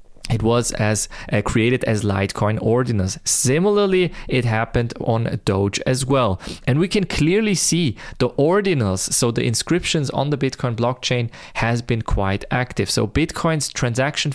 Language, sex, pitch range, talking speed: English, male, 115-160 Hz, 150 wpm